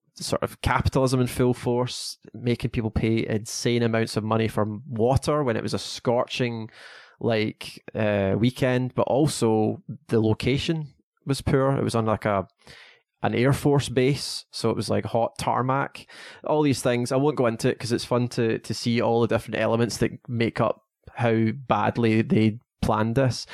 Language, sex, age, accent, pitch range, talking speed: English, male, 20-39, British, 110-125 Hz, 180 wpm